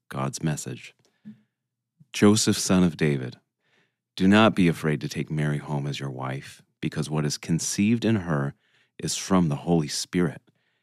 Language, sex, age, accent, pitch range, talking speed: English, male, 30-49, American, 75-95 Hz, 155 wpm